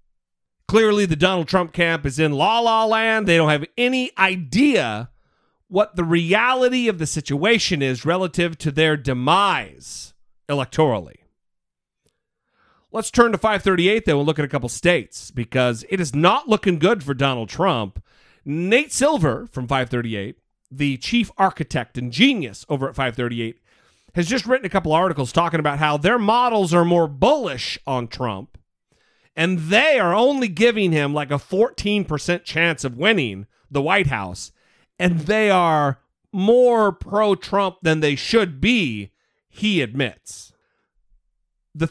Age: 40-59